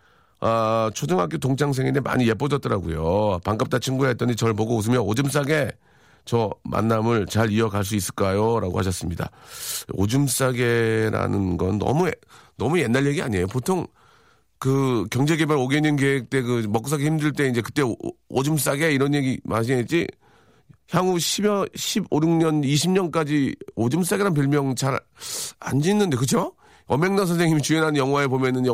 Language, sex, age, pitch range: Korean, male, 40-59, 115-165 Hz